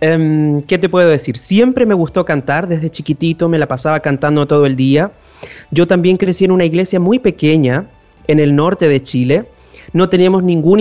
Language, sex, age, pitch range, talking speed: Spanish, male, 30-49, 150-185 Hz, 185 wpm